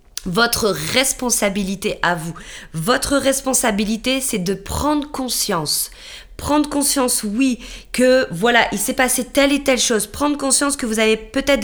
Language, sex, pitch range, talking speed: French, female, 210-270 Hz, 145 wpm